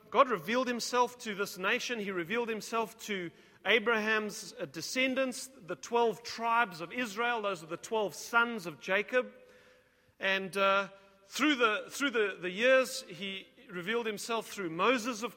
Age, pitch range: 40-59, 190-235 Hz